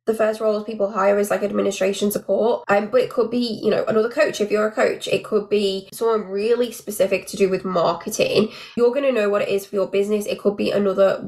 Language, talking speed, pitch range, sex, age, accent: English, 245 wpm, 185-220 Hz, female, 10-29, British